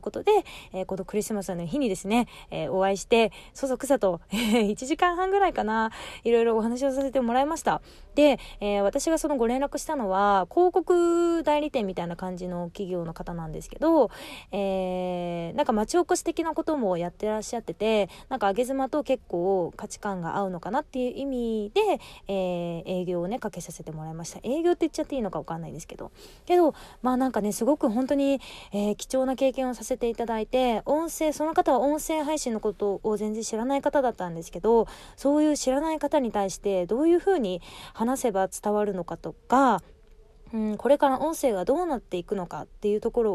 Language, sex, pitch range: Japanese, female, 195-280 Hz